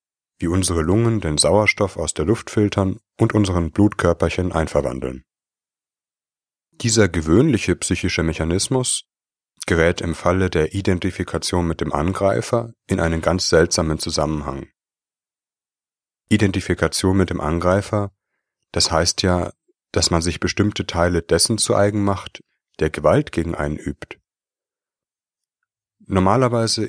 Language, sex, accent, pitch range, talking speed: German, male, German, 80-100 Hz, 115 wpm